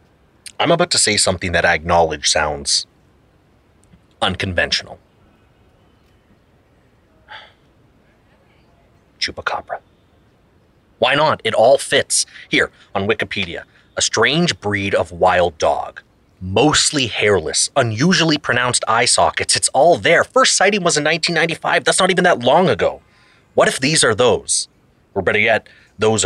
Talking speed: 125 wpm